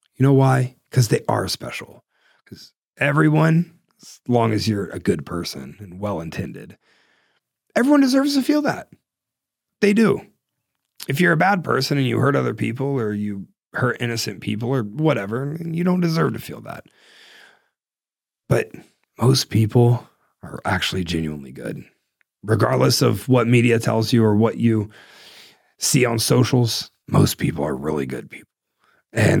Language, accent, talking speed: English, American, 150 wpm